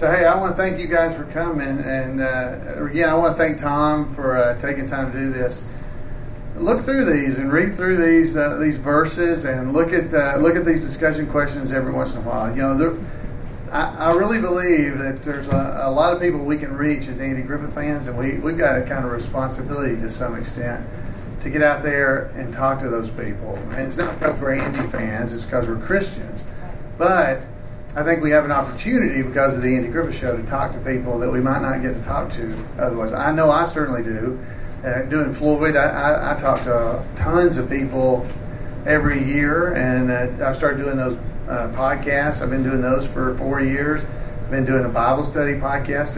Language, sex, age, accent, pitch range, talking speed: English, male, 40-59, American, 125-150 Hz, 215 wpm